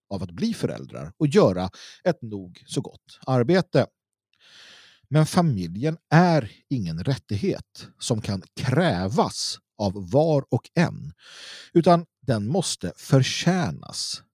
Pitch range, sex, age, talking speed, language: 105-165 Hz, male, 50-69, 115 wpm, Swedish